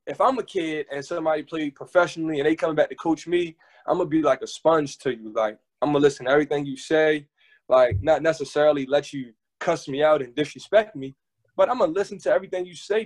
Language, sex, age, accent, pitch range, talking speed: English, male, 20-39, American, 135-180 Hz, 245 wpm